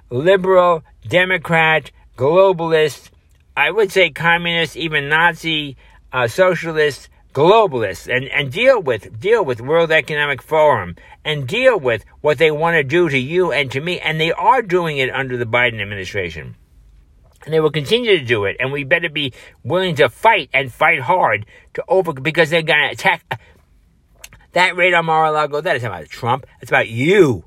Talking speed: 160 wpm